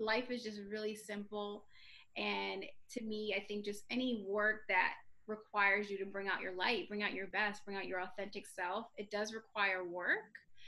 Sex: female